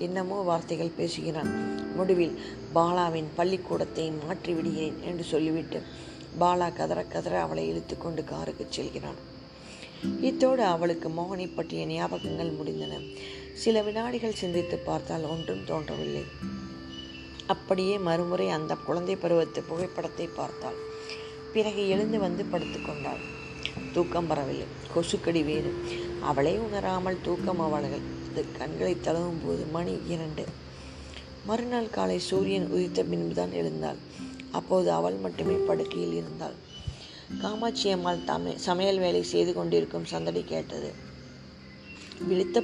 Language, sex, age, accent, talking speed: Tamil, female, 20-39, native, 105 wpm